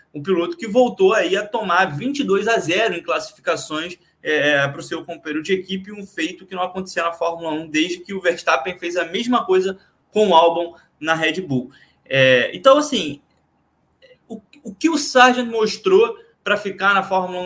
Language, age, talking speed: Portuguese, 20-39, 185 wpm